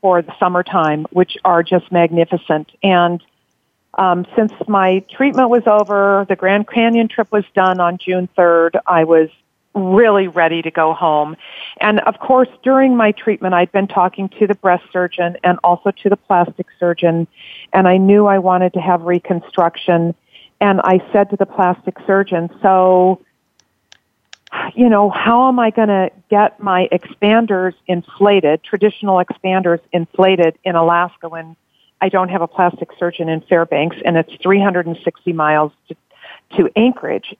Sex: female